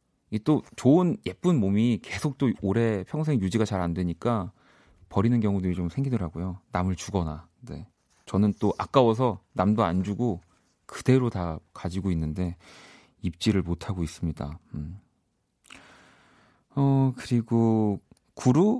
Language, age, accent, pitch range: Korean, 40-59, native, 90-125 Hz